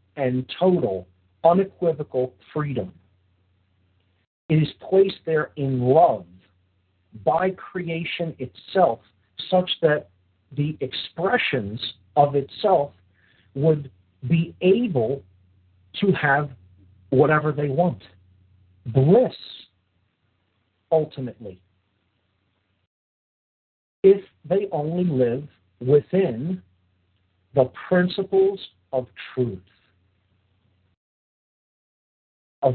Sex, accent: male, American